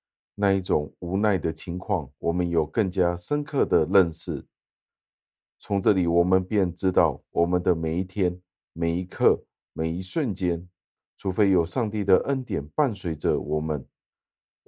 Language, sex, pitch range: Chinese, male, 80-95 Hz